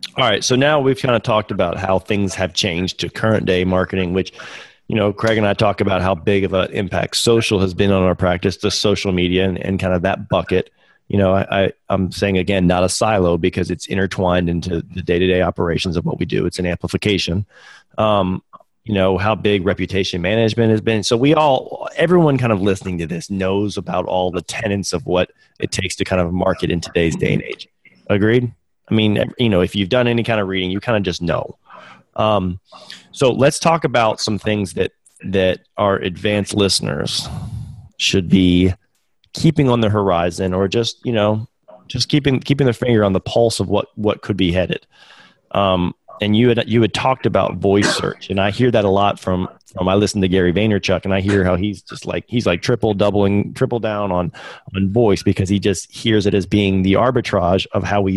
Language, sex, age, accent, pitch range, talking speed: English, male, 30-49, American, 95-110 Hz, 215 wpm